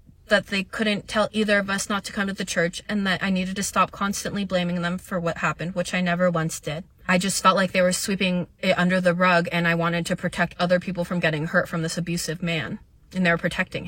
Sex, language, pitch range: female, English, 175-205 Hz